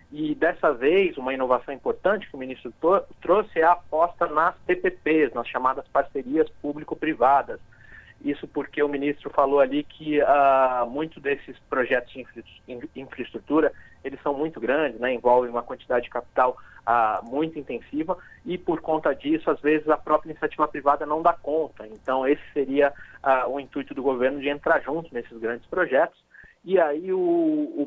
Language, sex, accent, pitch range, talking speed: Portuguese, male, Brazilian, 130-160 Hz, 155 wpm